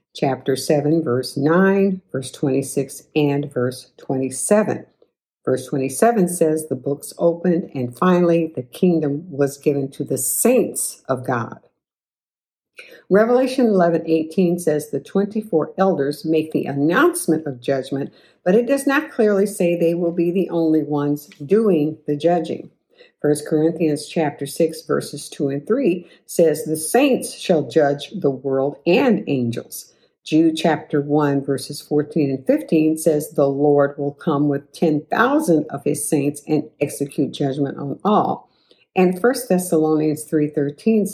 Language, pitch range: English, 145-185 Hz